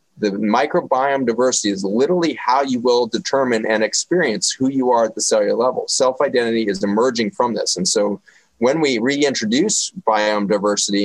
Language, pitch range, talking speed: English, 105-130 Hz, 170 wpm